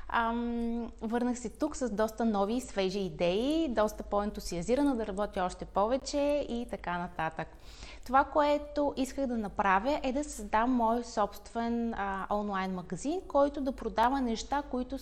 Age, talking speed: 20-39, 150 wpm